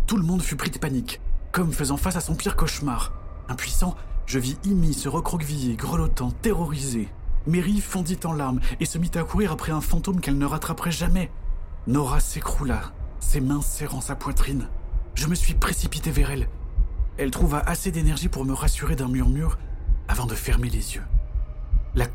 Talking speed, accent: 180 wpm, French